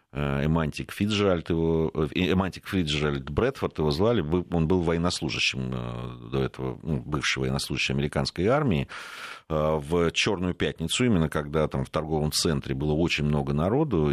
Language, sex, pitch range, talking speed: Russian, male, 70-85 Hz, 115 wpm